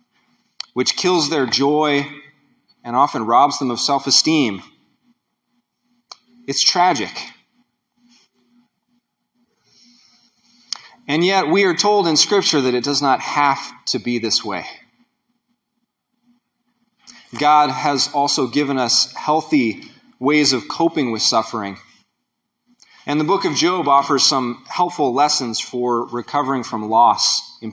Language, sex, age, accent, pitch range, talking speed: English, male, 30-49, American, 135-210 Hz, 115 wpm